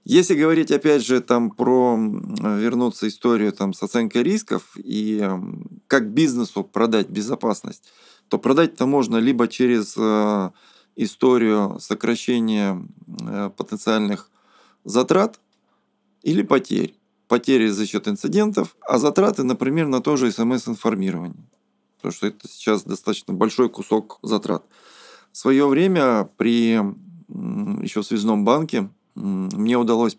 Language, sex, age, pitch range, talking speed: Russian, male, 20-39, 105-135 Hz, 115 wpm